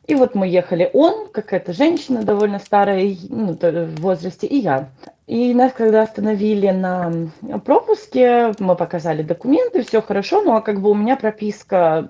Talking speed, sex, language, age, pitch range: 160 wpm, female, Russian, 20-39, 180-250 Hz